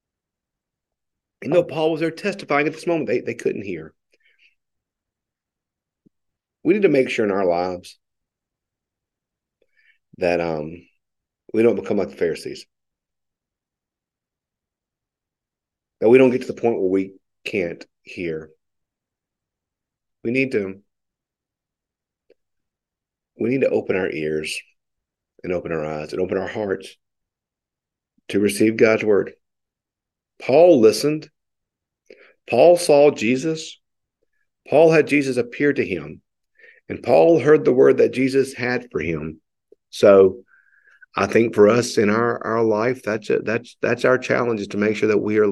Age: 50-69